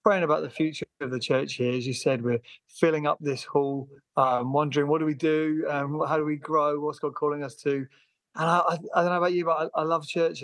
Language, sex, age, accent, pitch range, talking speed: English, male, 30-49, British, 135-170 Hz, 255 wpm